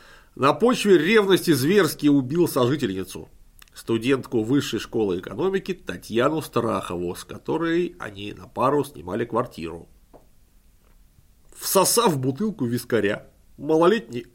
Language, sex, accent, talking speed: Russian, male, native, 95 wpm